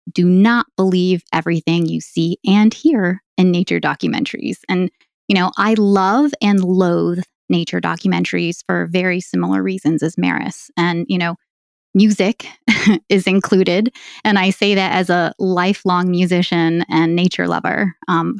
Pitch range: 170-195 Hz